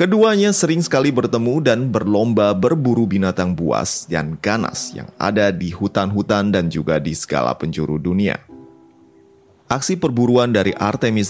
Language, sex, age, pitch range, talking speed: Indonesian, male, 30-49, 90-130 Hz, 135 wpm